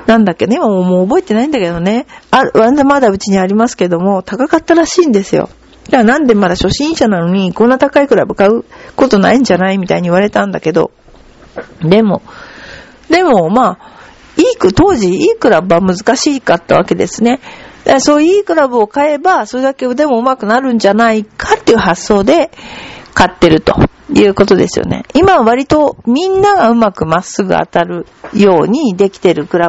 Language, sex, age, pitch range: Japanese, female, 50-69, 190-285 Hz